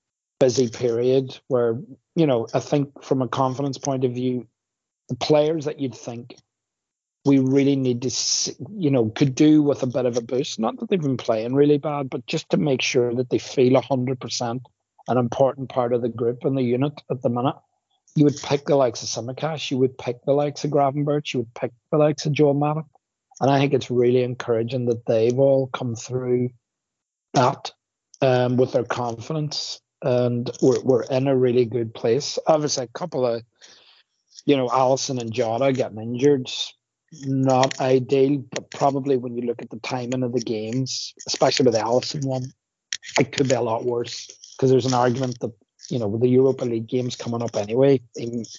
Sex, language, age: male, English, 40-59